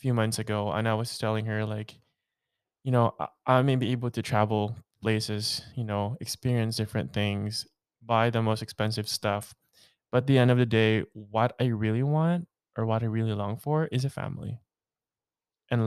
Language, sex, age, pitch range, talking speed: English, male, 20-39, 110-130 Hz, 190 wpm